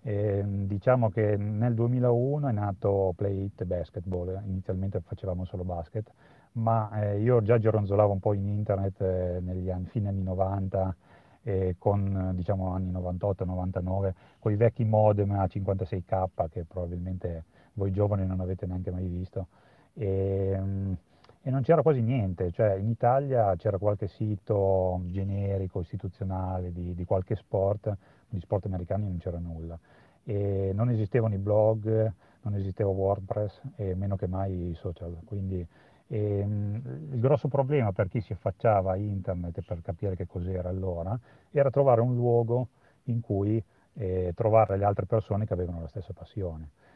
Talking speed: 150 wpm